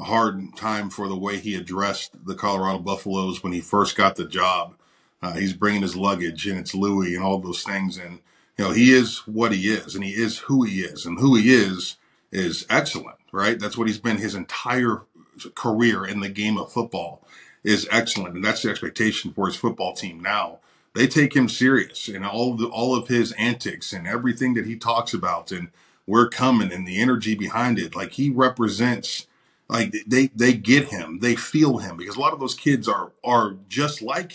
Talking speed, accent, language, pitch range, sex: 210 wpm, American, English, 100-125 Hz, male